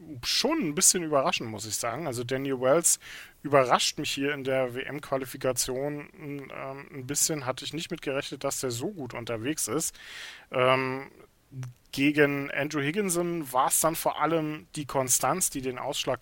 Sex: male